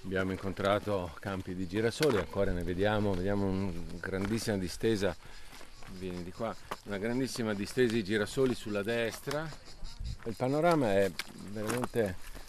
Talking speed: 125 wpm